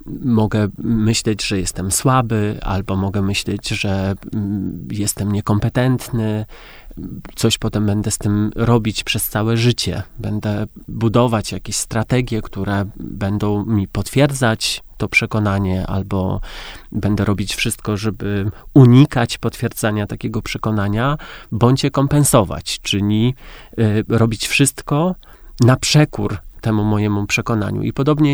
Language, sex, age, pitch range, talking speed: Polish, male, 30-49, 105-125 Hz, 110 wpm